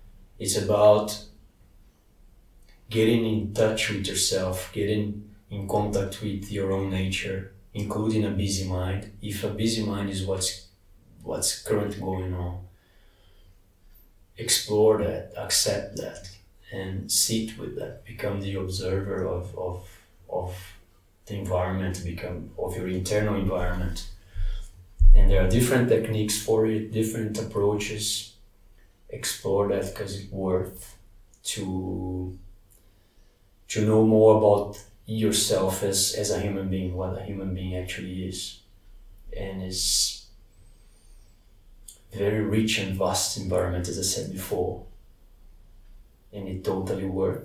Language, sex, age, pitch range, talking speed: English, male, 30-49, 95-105 Hz, 120 wpm